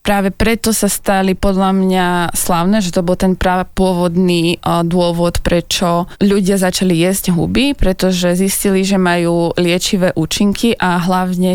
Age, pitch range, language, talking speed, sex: 20-39, 180-200 Hz, Slovak, 135 wpm, female